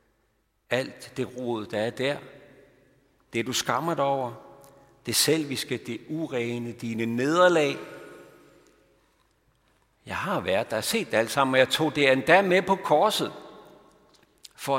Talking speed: 135 wpm